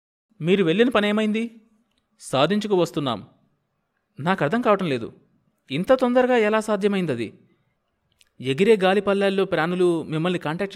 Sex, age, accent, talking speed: male, 20-39, native, 105 wpm